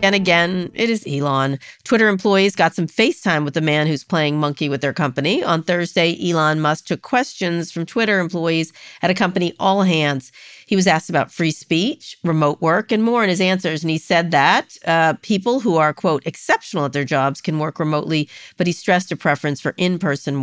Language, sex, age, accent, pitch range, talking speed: English, female, 50-69, American, 150-185 Hz, 205 wpm